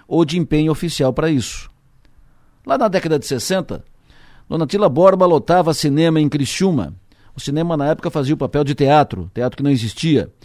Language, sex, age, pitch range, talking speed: Portuguese, male, 50-69, 130-170 Hz, 170 wpm